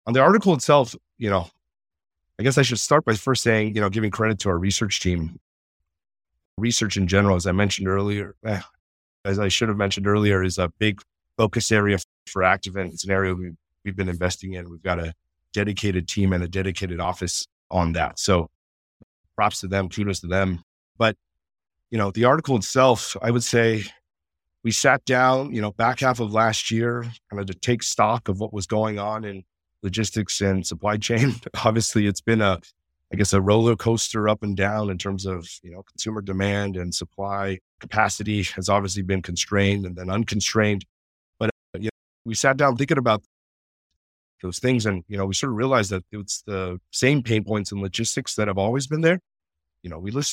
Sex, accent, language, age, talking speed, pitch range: male, American, English, 30-49, 195 wpm, 90-110 Hz